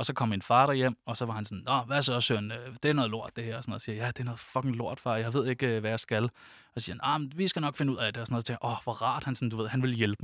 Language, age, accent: Danish, 20-39, native